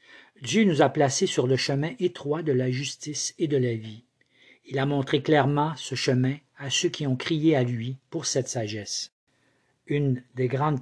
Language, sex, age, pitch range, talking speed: French, male, 50-69, 130-150 Hz, 190 wpm